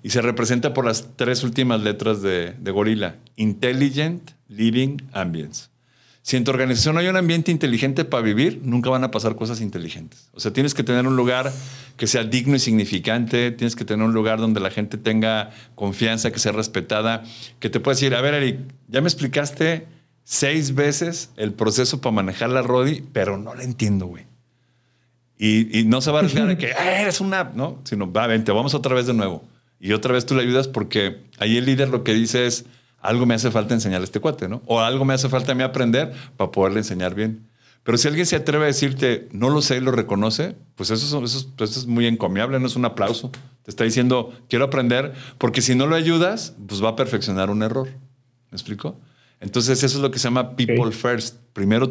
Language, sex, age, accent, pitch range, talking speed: Spanish, male, 50-69, Mexican, 110-135 Hz, 220 wpm